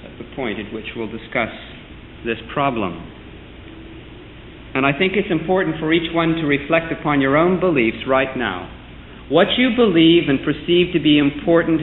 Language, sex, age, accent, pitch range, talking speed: English, male, 50-69, American, 125-165 Hz, 160 wpm